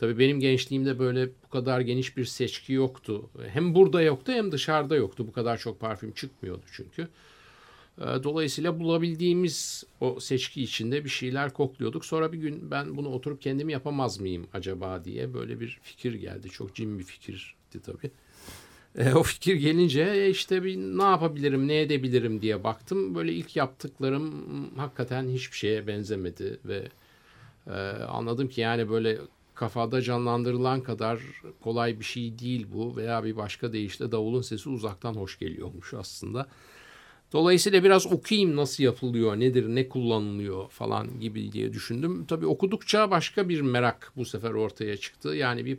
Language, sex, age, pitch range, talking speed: Turkish, male, 50-69, 110-145 Hz, 150 wpm